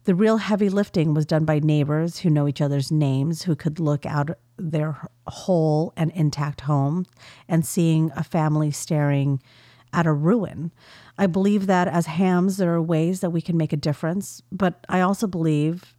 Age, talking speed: 40-59, 180 wpm